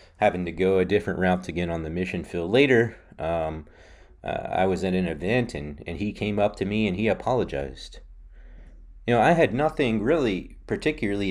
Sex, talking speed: male, 190 wpm